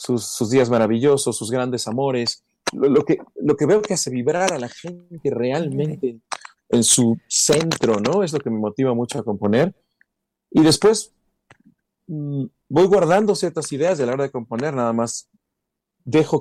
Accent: Mexican